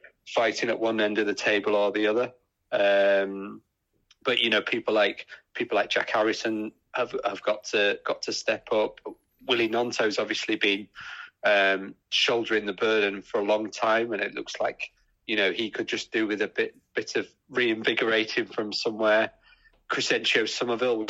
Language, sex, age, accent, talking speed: English, male, 30-49, British, 175 wpm